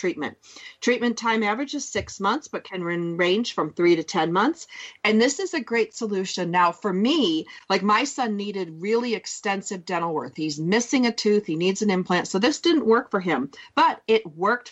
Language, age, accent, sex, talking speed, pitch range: English, 40-59, American, female, 200 wpm, 195-255 Hz